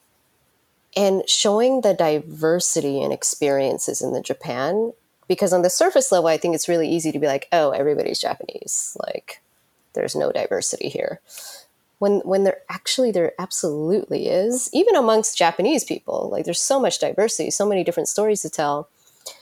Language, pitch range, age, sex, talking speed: English, 170-260 Hz, 20-39, female, 160 wpm